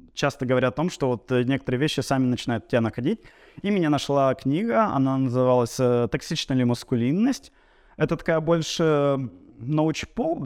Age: 20-39